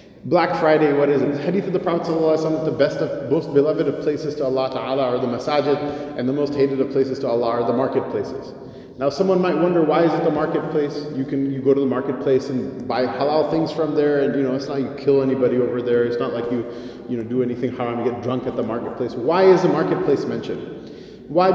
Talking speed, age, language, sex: 245 wpm, 30-49, English, male